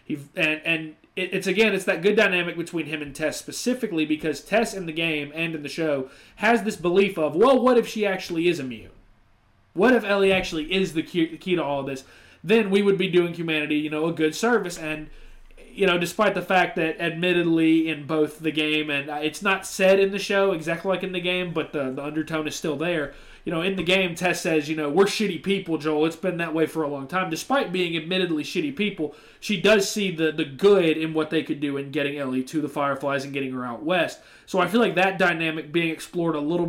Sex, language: male, English